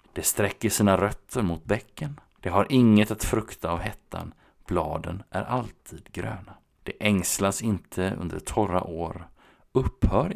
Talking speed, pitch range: 140 wpm, 90-115 Hz